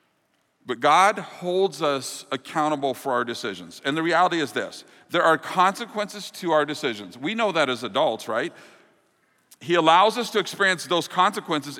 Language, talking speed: English, 165 wpm